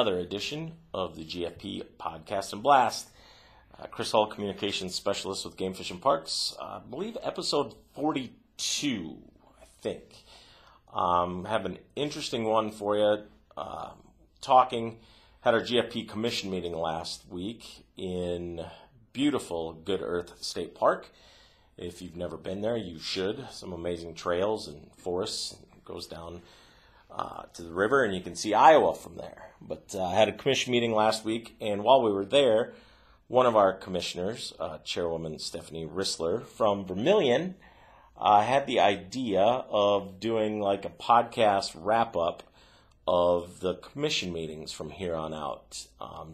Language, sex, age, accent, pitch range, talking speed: English, male, 40-59, American, 85-110 Hz, 150 wpm